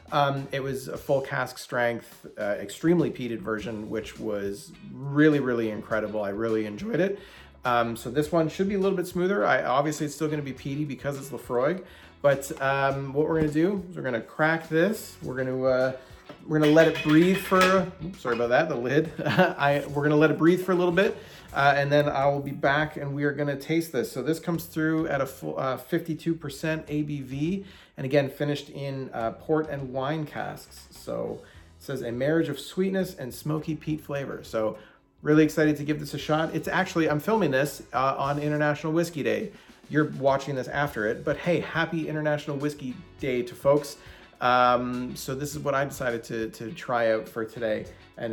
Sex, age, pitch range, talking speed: male, 30-49, 125-160 Hz, 205 wpm